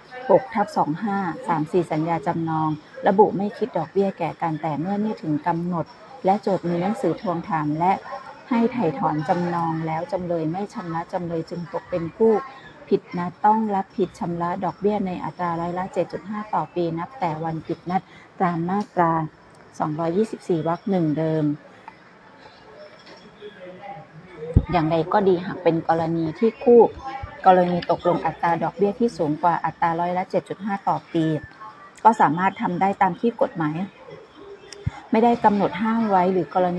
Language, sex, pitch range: Thai, female, 165-205 Hz